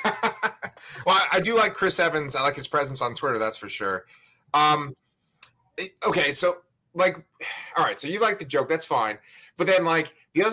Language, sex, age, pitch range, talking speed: English, male, 30-49, 120-160 Hz, 190 wpm